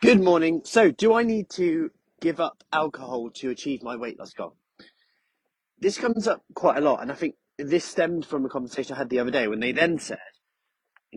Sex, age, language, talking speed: male, 30-49, English, 215 wpm